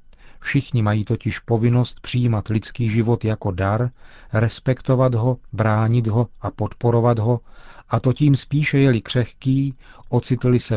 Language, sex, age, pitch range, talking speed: Czech, male, 40-59, 110-130 Hz, 135 wpm